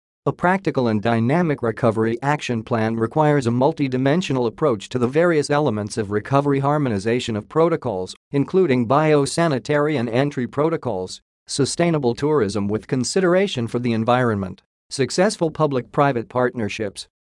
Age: 50-69